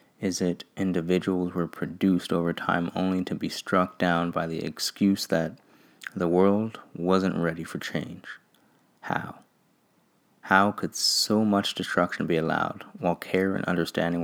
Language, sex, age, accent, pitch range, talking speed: English, male, 20-39, American, 85-95 Hz, 145 wpm